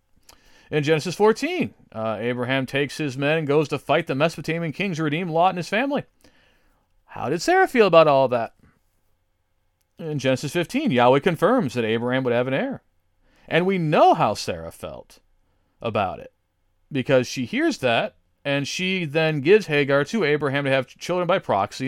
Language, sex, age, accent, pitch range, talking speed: English, male, 40-59, American, 110-150 Hz, 170 wpm